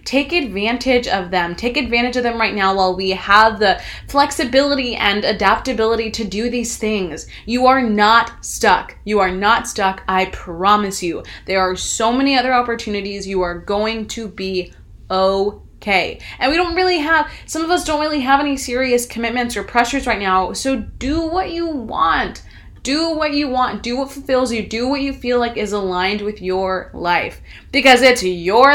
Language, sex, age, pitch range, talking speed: English, female, 20-39, 200-270 Hz, 185 wpm